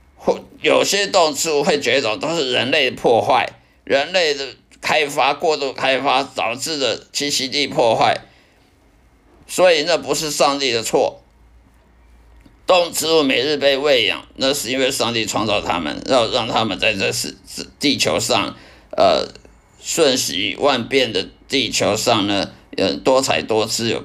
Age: 50-69